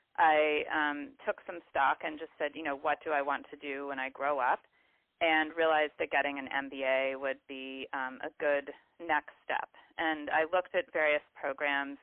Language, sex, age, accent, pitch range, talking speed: English, female, 30-49, American, 140-165 Hz, 195 wpm